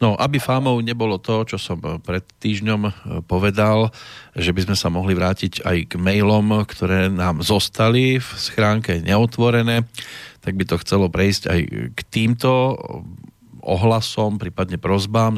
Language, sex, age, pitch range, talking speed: Slovak, male, 40-59, 95-115 Hz, 140 wpm